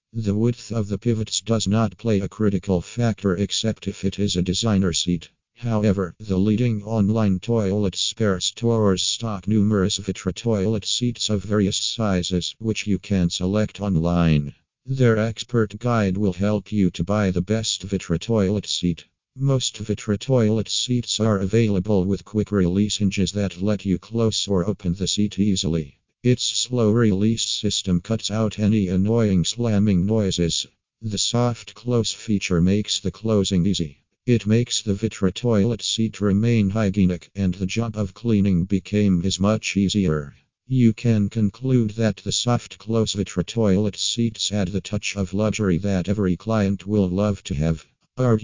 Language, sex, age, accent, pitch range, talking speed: English, male, 50-69, American, 95-110 Hz, 155 wpm